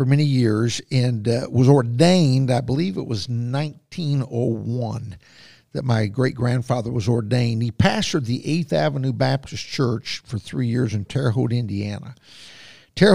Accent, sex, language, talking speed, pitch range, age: American, male, English, 145 wpm, 115-140 Hz, 60-79